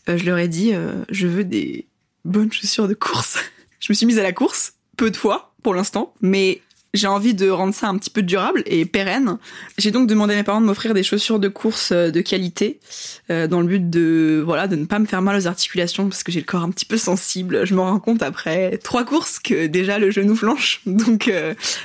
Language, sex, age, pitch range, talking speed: French, female, 20-39, 175-210 Hz, 240 wpm